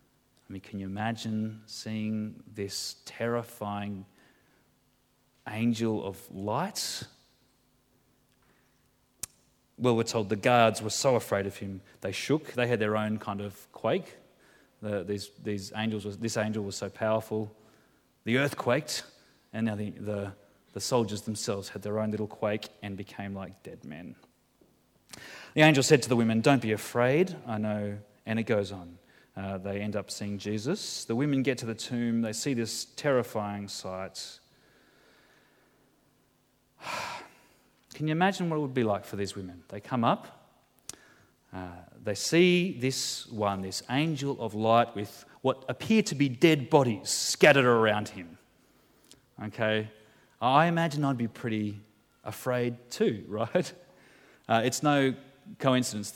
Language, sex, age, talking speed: English, male, 30-49, 140 wpm